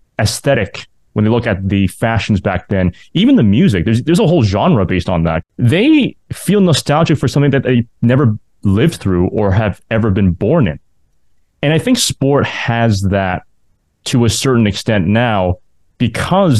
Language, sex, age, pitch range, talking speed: English, male, 30-49, 95-125 Hz, 175 wpm